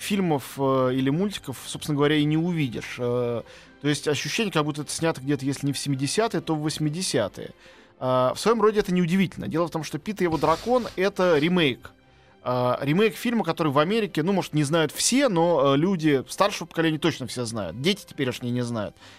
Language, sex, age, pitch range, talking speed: Russian, male, 20-39, 135-185 Hz, 205 wpm